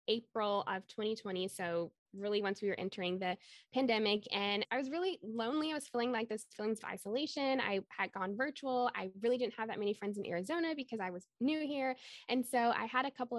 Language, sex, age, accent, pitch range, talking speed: English, female, 10-29, American, 195-240 Hz, 215 wpm